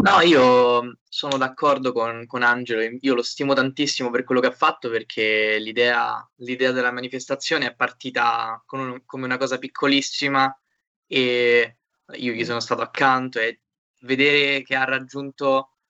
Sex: male